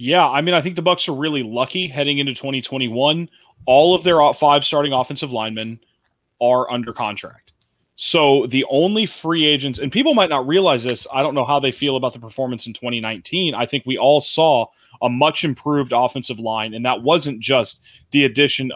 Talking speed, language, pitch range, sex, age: 195 wpm, English, 120-145 Hz, male, 20-39